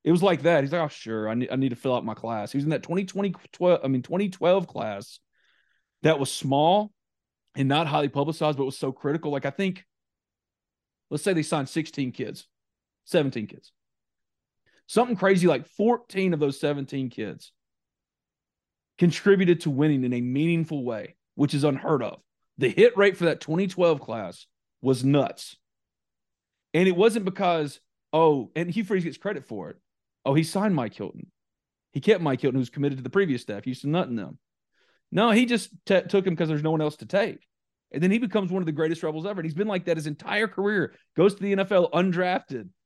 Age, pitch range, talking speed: 30-49, 140-185 Hz, 205 wpm